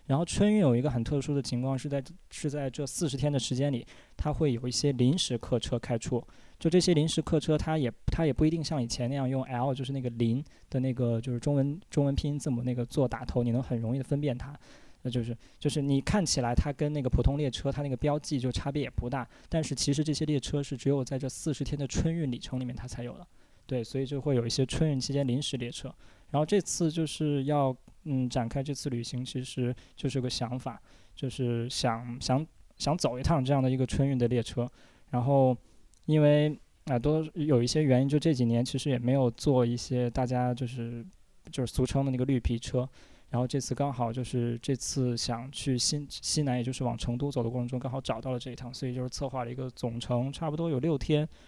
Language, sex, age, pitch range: Chinese, male, 20-39, 125-145 Hz